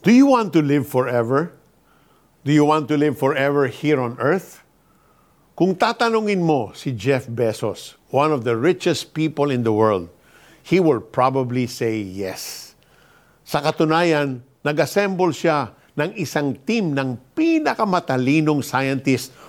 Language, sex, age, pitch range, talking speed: Filipino, male, 50-69, 120-165 Hz, 135 wpm